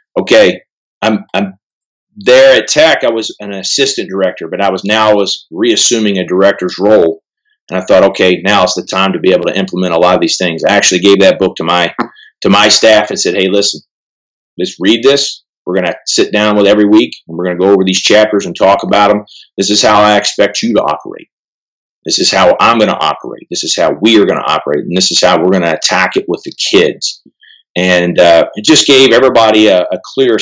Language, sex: English, male